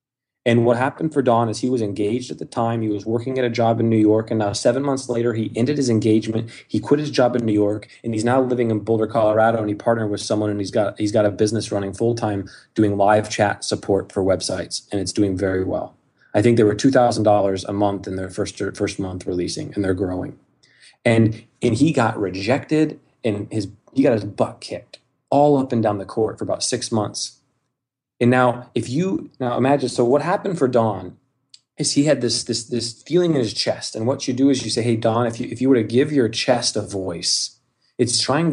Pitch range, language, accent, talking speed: 105-125 Hz, English, American, 235 wpm